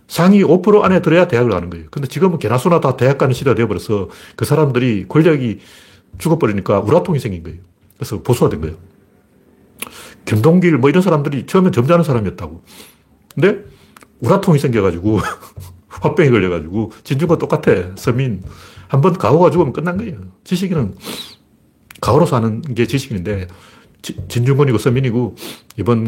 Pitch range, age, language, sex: 100-135 Hz, 40-59, Korean, male